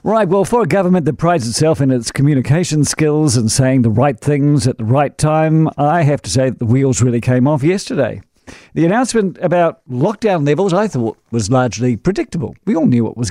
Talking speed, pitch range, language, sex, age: 210 wpm, 130-190 Hz, English, male, 50-69